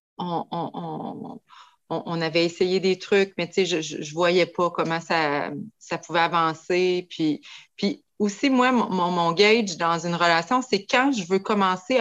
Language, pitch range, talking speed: French, 170-215 Hz, 170 wpm